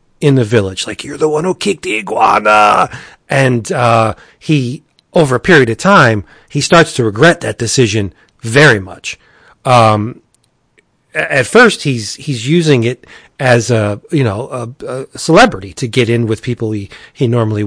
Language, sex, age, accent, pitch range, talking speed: English, male, 40-59, American, 115-155 Hz, 165 wpm